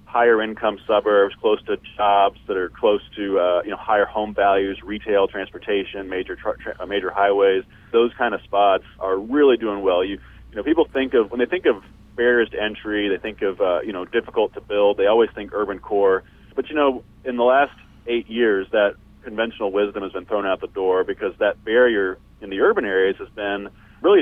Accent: American